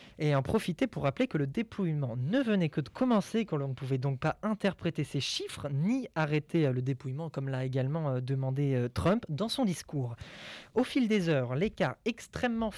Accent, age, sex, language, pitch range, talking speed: French, 20-39, male, French, 135-185 Hz, 190 wpm